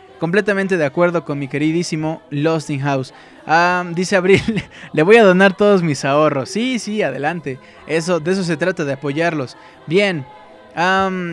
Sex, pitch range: male, 155-200 Hz